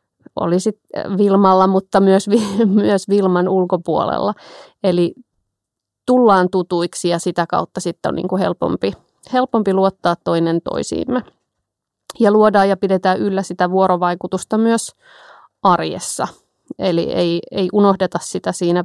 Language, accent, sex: Finnish, native, female